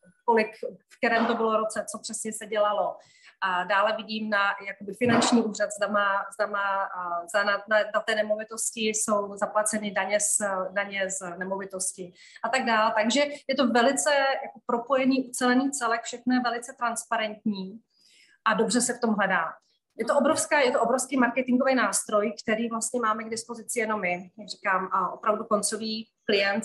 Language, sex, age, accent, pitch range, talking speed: Czech, female, 30-49, native, 200-235 Hz, 160 wpm